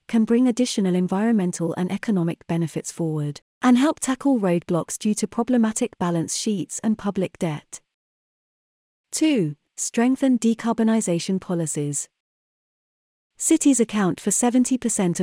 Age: 30-49